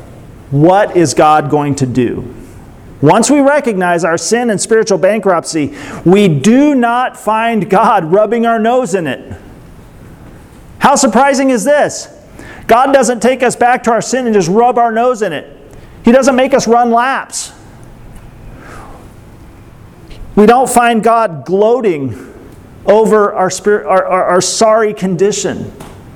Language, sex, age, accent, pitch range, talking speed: English, male, 40-59, American, 180-245 Hz, 140 wpm